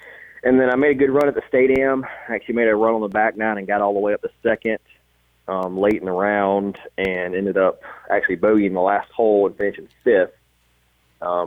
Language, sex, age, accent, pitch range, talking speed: English, male, 30-49, American, 90-110 Hz, 230 wpm